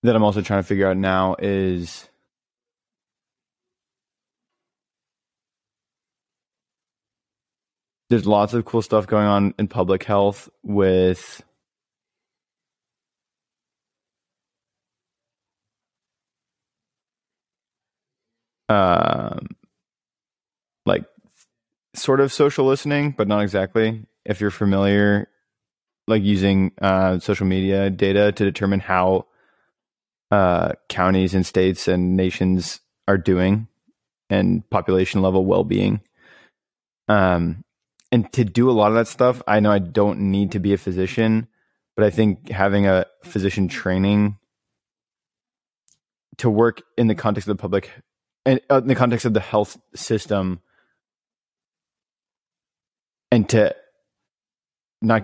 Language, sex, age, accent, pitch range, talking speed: English, male, 20-39, American, 95-110 Hz, 110 wpm